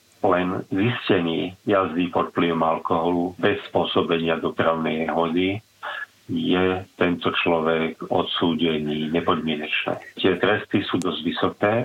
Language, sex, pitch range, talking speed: Slovak, male, 85-90 Hz, 100 wpm